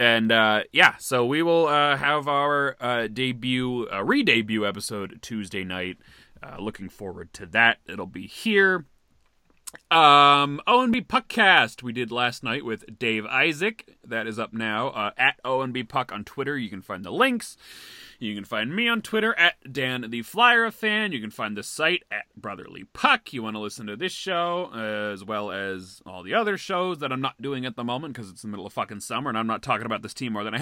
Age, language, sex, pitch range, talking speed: 30-49, English, male, 105-165 Hz, 210 wpm